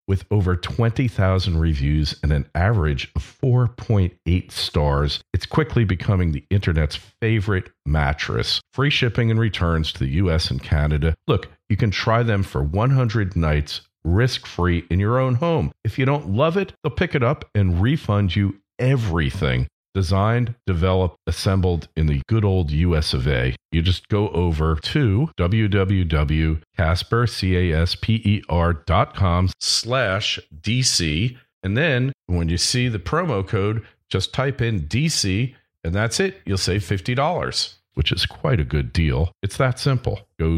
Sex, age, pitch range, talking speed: male, 50-69, 85-115 Hz, 145 wpm